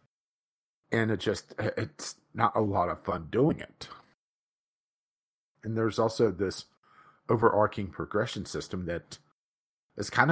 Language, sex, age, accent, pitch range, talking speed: English, male, 40-59, American, 95-115 Hz, 120 wpm